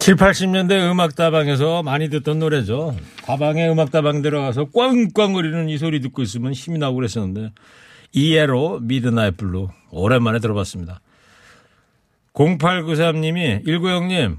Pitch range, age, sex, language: 120-160 Hz, 40-59, male, Korean